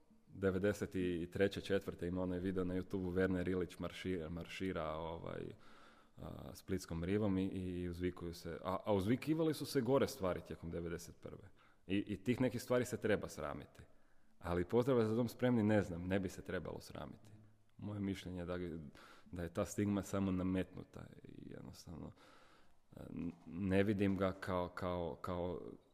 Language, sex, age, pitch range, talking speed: Croatian, male, 30-49, 90-105 Hz, 155 wpm